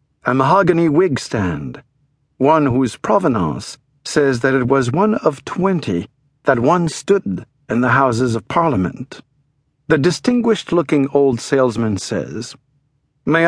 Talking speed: 125 wpm